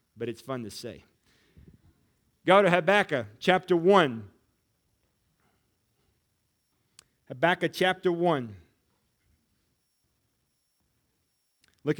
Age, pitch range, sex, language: 40-59, 115-185 Hz, male, English